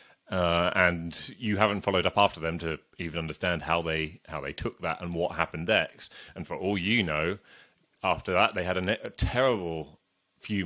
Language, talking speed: English, 190 wpm